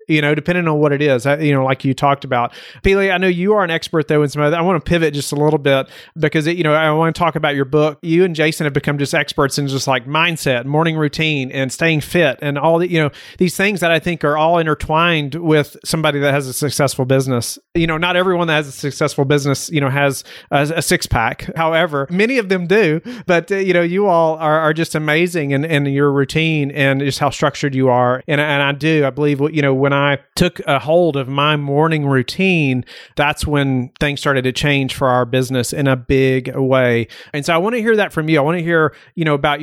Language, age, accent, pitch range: English, 30-49, American, 140-165 Hz